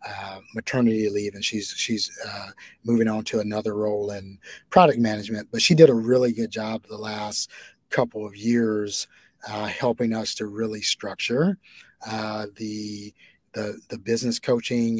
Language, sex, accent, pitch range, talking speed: English, male, American, 105-120 Hz, 155 wpm